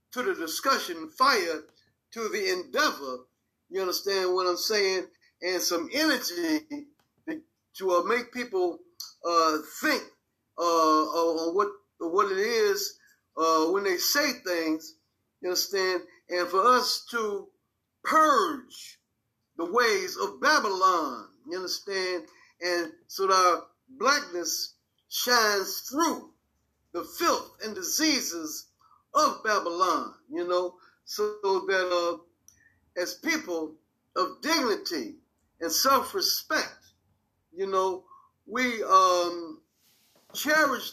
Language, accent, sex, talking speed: English, American, male, 115 wpm